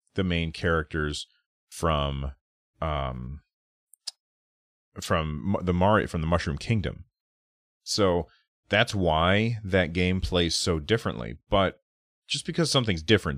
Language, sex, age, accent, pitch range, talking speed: English, male, 30-49, American, 80-100 Hz, 110 wpm